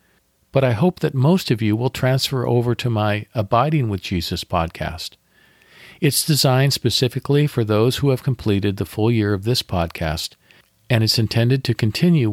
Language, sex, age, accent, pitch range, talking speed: English, male, 50-69, American, 95-130 Hz, 170 wpm